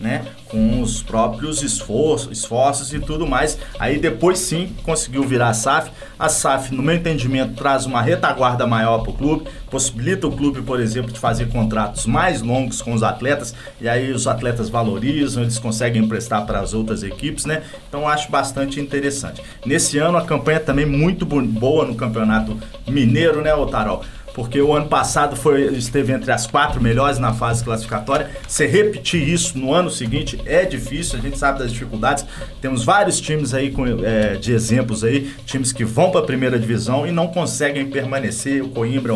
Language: Portuguese